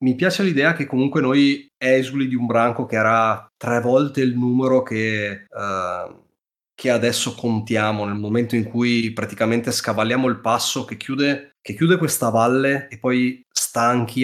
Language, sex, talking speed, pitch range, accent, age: Italian, male, 150 wpm, 100-125 Hz, native, 30-49